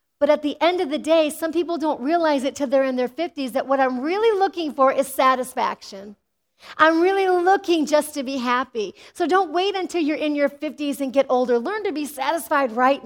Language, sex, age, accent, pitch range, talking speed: English, female, 40-59, American, 220-290 Hz, 220 wpm